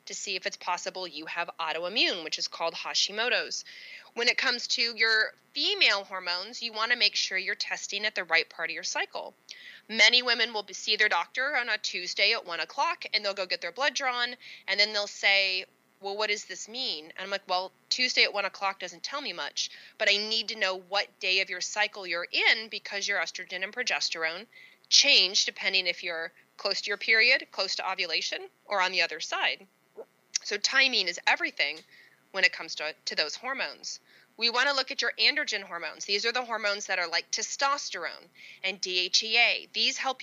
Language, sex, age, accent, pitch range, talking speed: English, female, 20-39, American, 190-245 Hz, 205 wpm